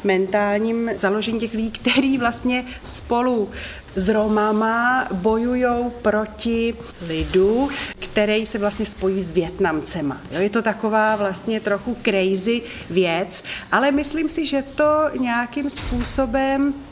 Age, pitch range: 30-49, 195-240 Hz